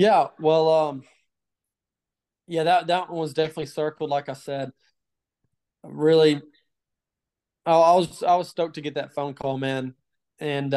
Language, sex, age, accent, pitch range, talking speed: English, male, 20-39, American, 135-160 Hz, 150 wpm